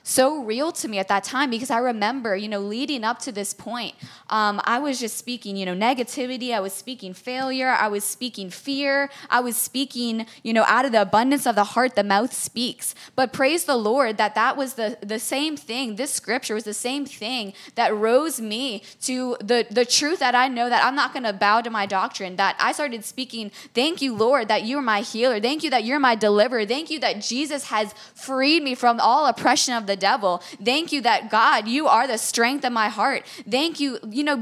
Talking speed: 225 wpm